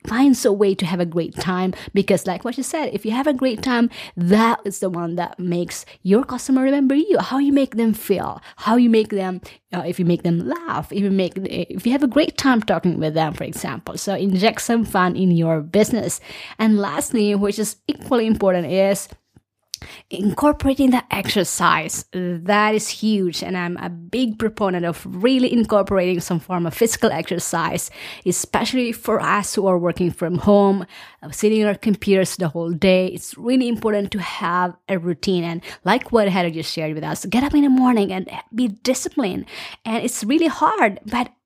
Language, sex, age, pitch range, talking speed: English, female, 20-39, 185-250 Hz, 195 wpm